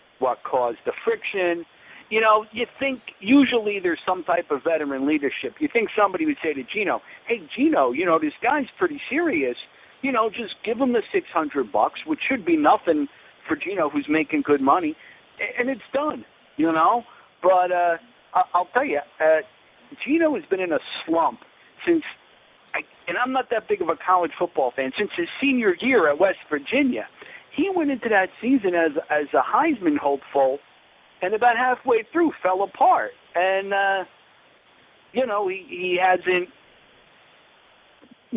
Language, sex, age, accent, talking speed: English, male, 50-69, American, 165 wpm